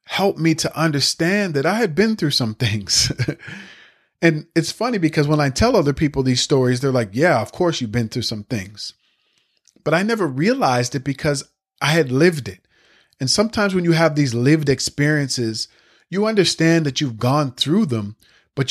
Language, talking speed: English, 185 wpm